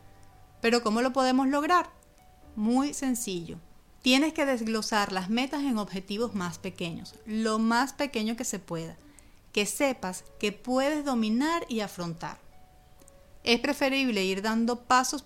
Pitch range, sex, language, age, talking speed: 190-260 Hz, female, Spanish, 40-59, 135 wpm